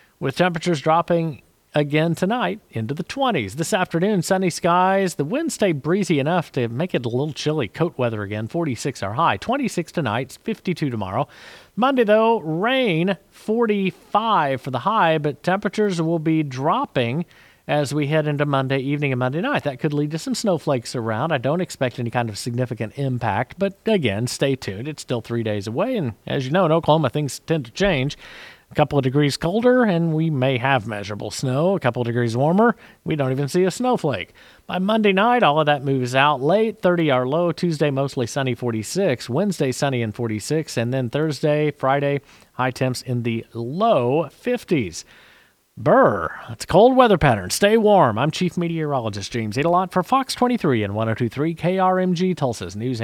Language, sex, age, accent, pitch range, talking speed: English, male, 40-59, American, 125-185 Hz, 180 wpm